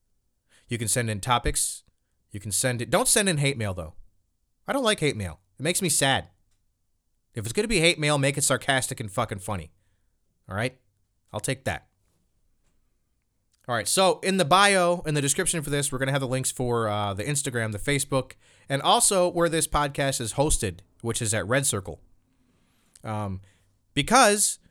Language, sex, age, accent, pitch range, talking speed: English, male, 30-49, American, 100-145 Hz, 190 wpm